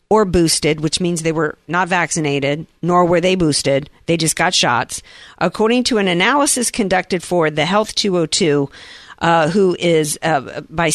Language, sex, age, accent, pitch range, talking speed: English, female, 50-69, American, 155-205 Hz, 165 wpm